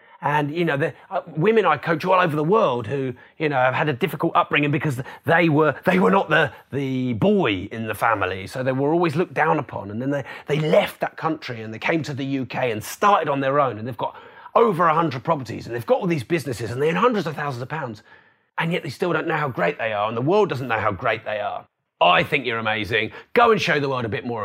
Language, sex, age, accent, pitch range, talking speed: English, male, 30-49, British, 120-160 Hz, 270 wpm